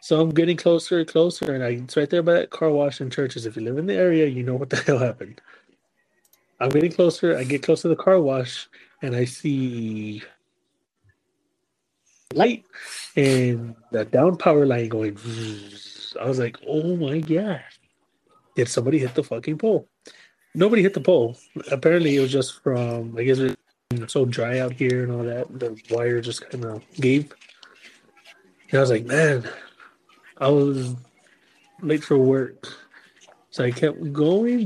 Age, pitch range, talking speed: 30-49, 125-160 Hz, 175 wpm